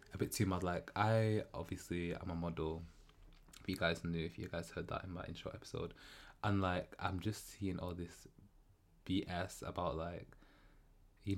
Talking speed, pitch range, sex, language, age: 180 wpm, 90-115 Hz, male, English, 20-39